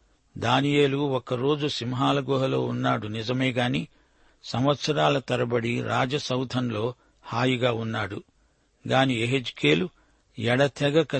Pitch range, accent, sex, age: 120-140 Hz, native, male, 60-79